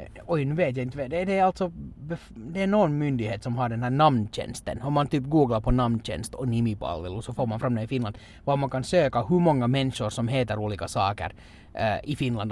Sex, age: male, 30-49